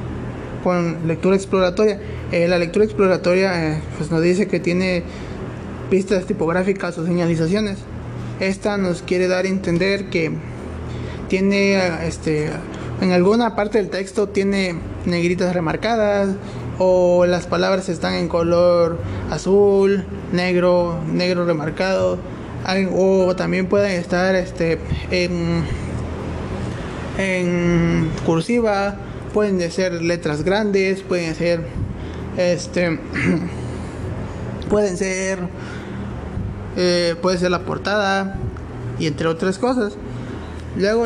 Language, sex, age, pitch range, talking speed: Spanish, male, 20-39, 170-195 Hz, 105 wpm